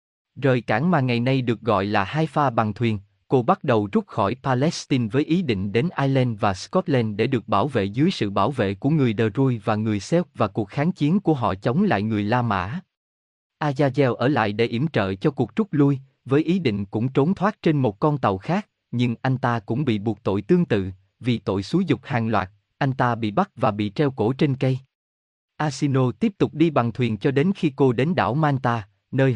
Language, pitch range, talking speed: Vietnamese, 110-145 Hz, 225 wpm